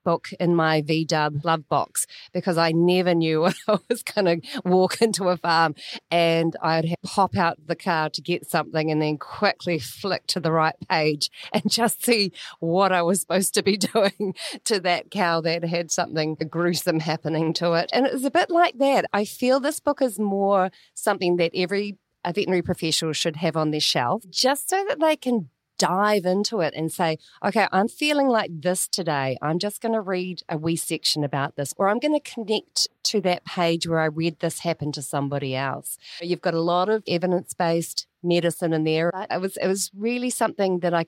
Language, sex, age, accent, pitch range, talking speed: English, female, 30-49, Australian, 160-195 Hz, 200 wpm